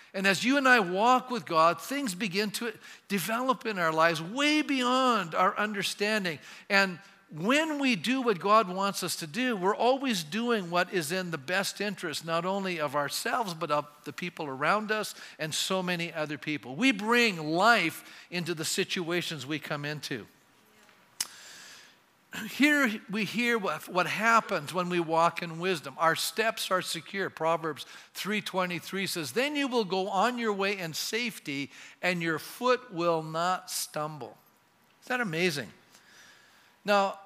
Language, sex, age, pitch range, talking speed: English, male, 50-69, 165-220 Hz, 160 wpm